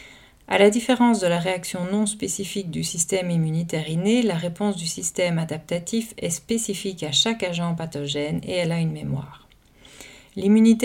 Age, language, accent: 40-59, French, French